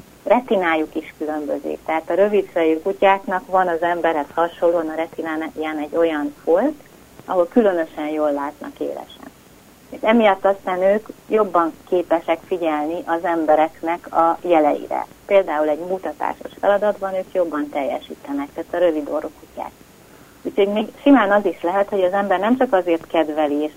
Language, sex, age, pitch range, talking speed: Hungarian, female, 30-49, 155-195 Hz, 145 wpm